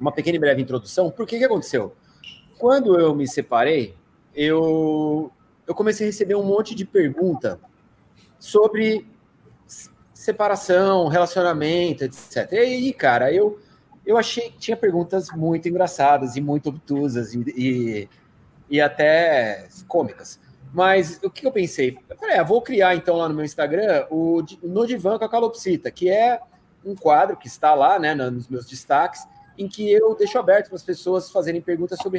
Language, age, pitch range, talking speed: Portuguese, 30-49, 155-230 Hz, 160 wpm